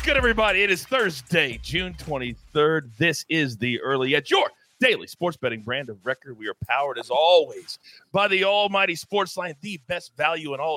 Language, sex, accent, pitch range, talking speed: English, male, American, 135-190 Hz, 190 wpm